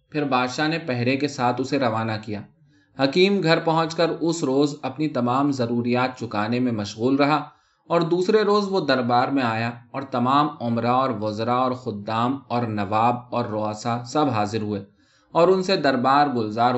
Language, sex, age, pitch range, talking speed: Urdu, male, 20-39, 120-160 Hz, 170 wpm